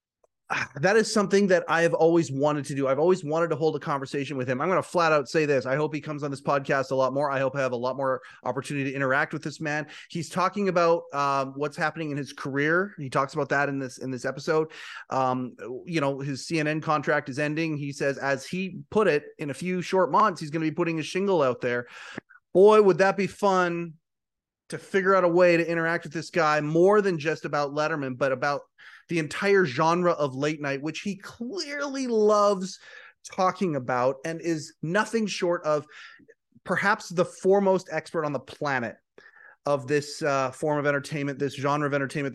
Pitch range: 135-175 Hz